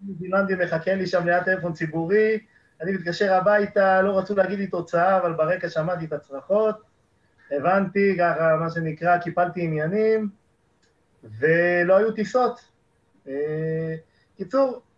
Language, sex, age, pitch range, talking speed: Hebrew, male, 30-49, 160-200 Hz, 120 wpm